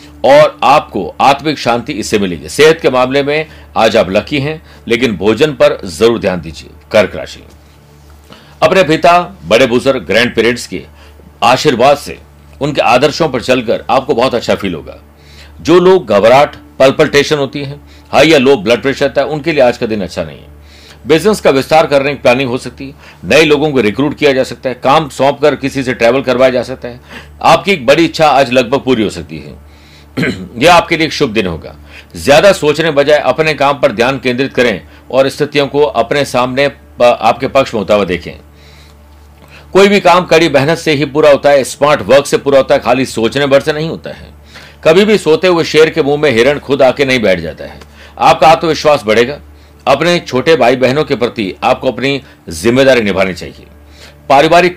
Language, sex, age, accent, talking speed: Hindi, male, 60-79, native, 195 wpm